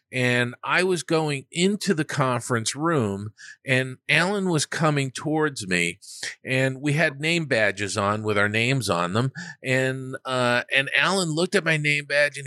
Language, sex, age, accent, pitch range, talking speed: English, male, 40-59, American, 125-170 Hz, 170 wpm